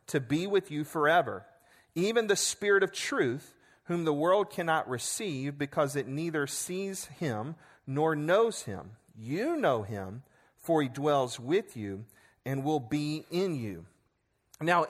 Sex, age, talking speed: male, 40-59, 150 wpm